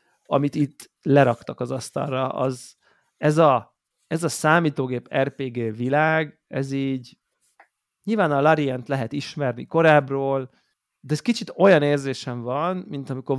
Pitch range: 130-160 Hz